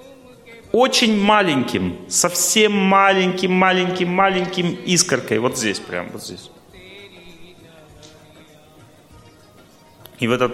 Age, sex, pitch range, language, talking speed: 30-49, male, 130-190 Hz, Russian, 75 wpm